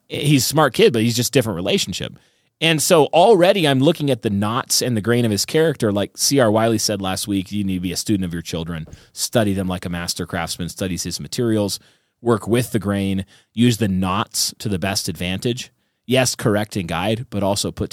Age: 30-49